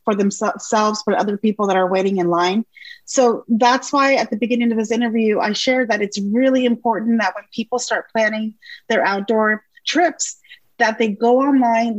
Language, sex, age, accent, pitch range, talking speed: English, female, 30-49, American, 205-240 Hz, 185 wpm